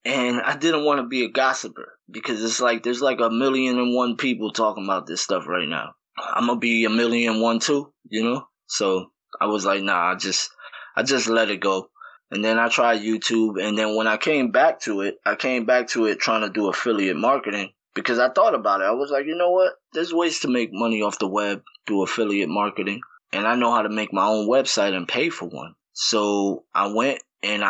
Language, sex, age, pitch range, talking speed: English, male, 20-39, 100-120 Hz, 235 wpm